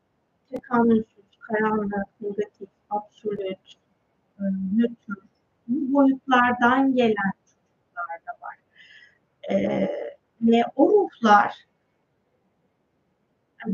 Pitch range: 205-300 Hz